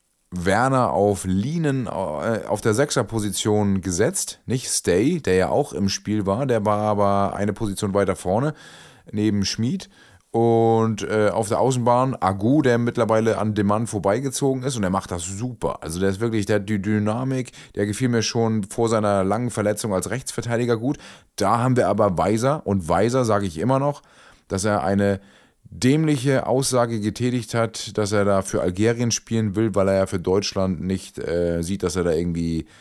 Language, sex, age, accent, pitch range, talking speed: German, male, 30-49, German, 95-115 Hz, 175 wpm